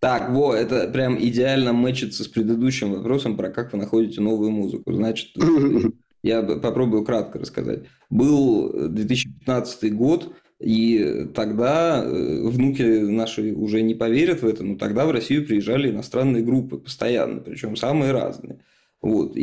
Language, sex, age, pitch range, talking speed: Russian, male, 20-39, 115-135 Hz, 135 wpm